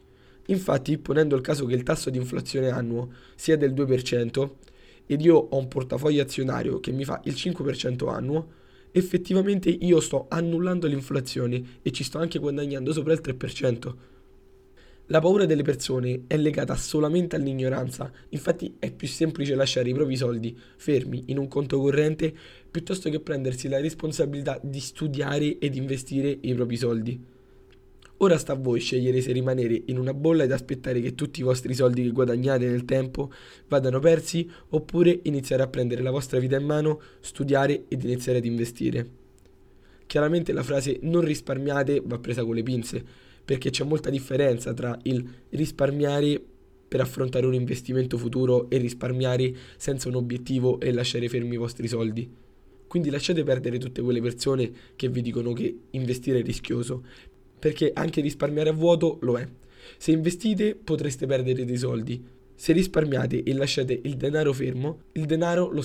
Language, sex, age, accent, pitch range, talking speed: Italian, male, 20-39, native, 125-150 Hz, 160 wpm